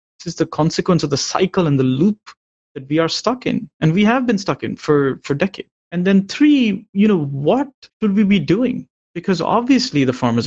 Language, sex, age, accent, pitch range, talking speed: English, male, 30-49, Indian, 130-180 Hz, 220 wpm